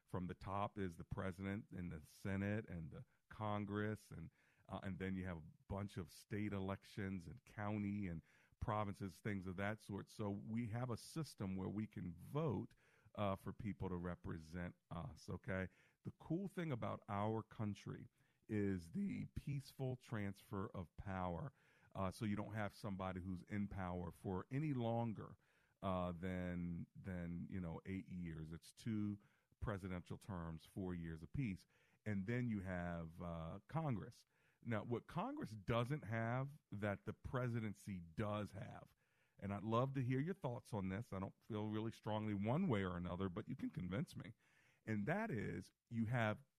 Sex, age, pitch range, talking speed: male, 40-59, 95-120 Hz, 165 wpm